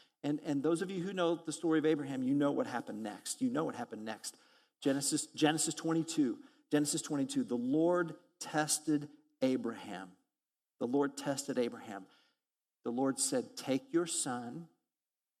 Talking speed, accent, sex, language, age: 155 wpm, American, male, English, 50-69